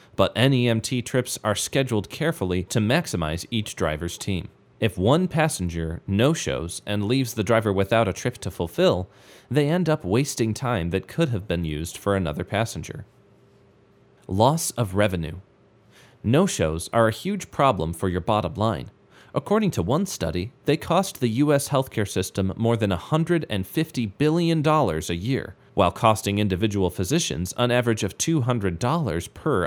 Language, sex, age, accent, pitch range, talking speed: English, male, 30-49, American, 95-135 Hz, 150 wpm